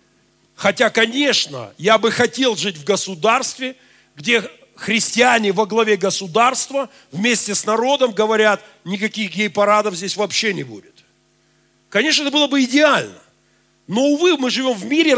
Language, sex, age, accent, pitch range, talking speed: Russian, male, 50-69, native, 200-275 Hz, 135 wpm